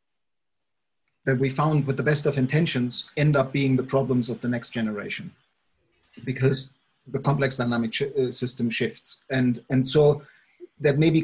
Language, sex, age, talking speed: English, male, 40-59, 155 wpm